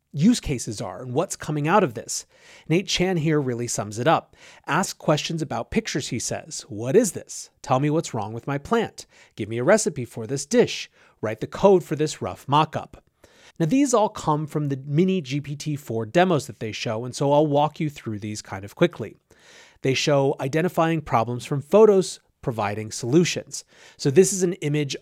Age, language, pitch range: 30-49, English, 125-170 Hz